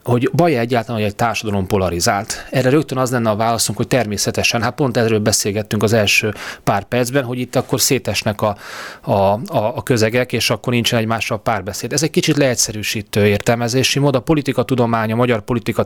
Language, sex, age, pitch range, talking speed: Hungarian, male, 30-49, 110-130 Hz, 180 wpm